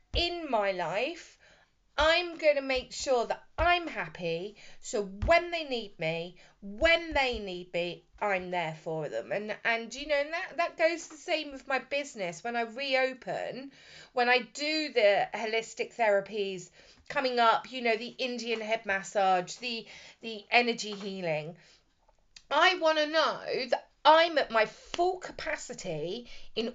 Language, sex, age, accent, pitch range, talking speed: English, female, 30-49, British, 205-310 Hz, 155 wpm